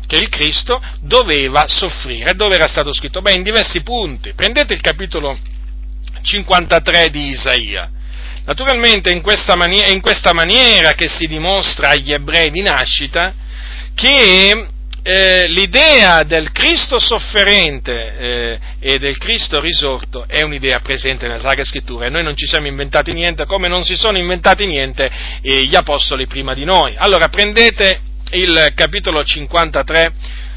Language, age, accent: Italian, 40-59, native